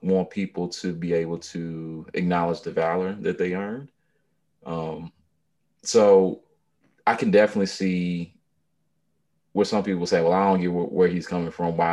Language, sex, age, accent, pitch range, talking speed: English, male, 30-49, American, 85-120 Hz, 160 wpm